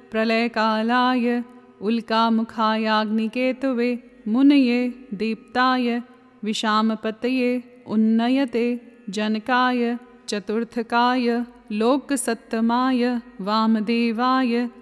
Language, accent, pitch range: Hindi, native, 225-250 Hz